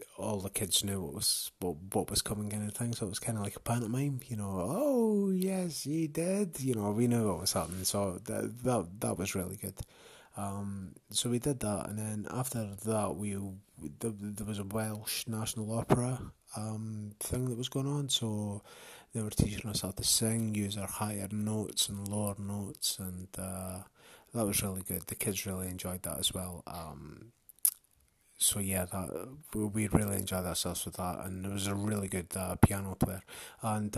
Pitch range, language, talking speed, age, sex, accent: 95-115 Hz, English, 200 wpm, 20-39, male, British